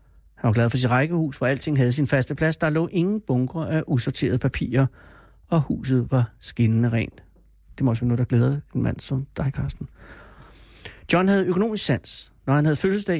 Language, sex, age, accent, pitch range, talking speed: Danish, male, 60-79, native, 110-155 Hz, 195 wpm